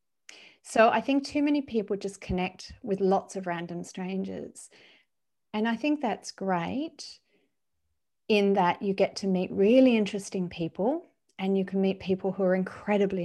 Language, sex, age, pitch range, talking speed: English, female, 40-59, 185-230 Hz, 160 wpm